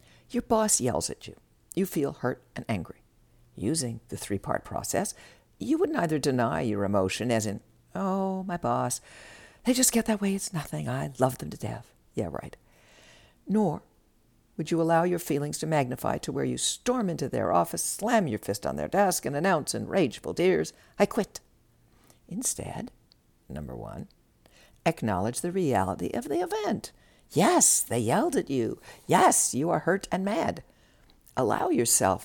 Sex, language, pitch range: female, English, 115-175 Hz